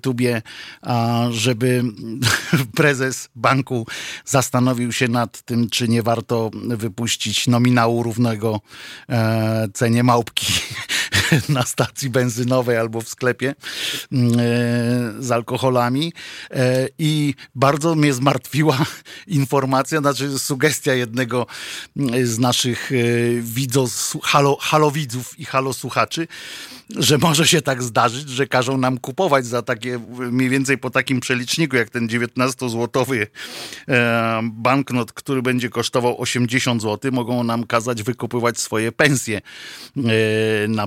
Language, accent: Polish, native